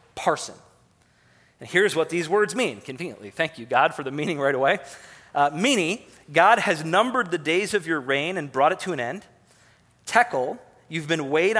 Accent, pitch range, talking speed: American, 140-185 Hz, 185 wpm